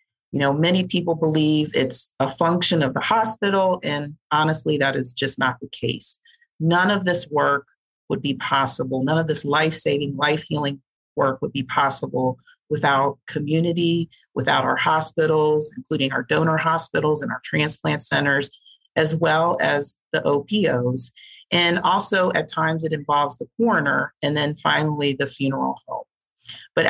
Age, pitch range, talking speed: 40-59, 135-165 Hz, 150 wpm